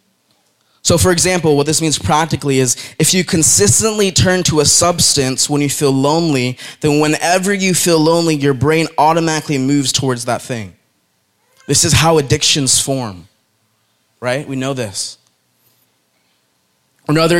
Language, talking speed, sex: English, 140 wpm, male